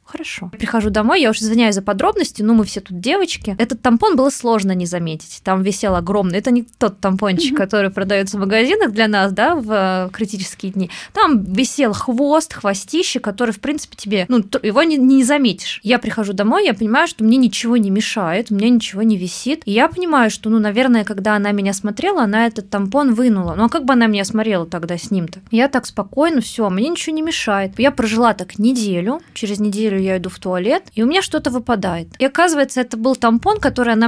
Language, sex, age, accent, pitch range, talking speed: Russian, female, 20-39, native, 200-250 Hz, 210 wpm